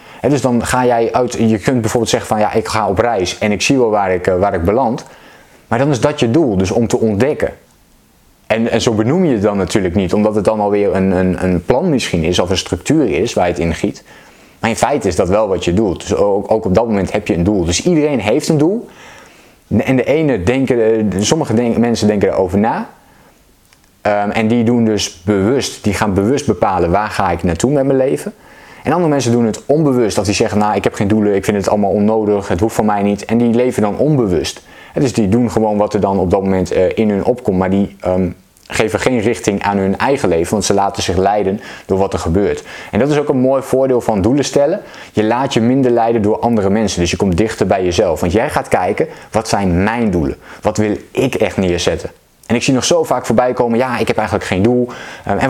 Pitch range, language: 100-120 Hz, Dutch